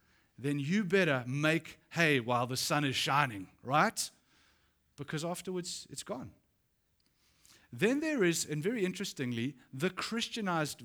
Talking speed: 125 wpm